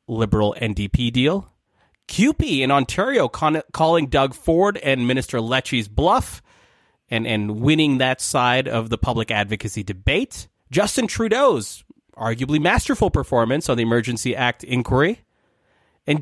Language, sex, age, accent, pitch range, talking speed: English, male, 30-49, American, 120-160 Hz, 125 wpm